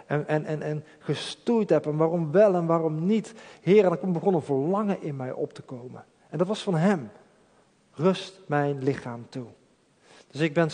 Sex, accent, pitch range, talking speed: male, Dutch, 135-180 Hz, 185 wpm